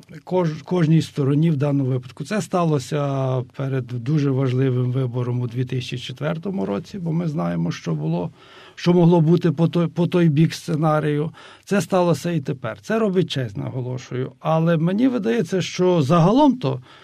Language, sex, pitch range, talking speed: Ukrainian, male, 140-175 Hz, 145 wpm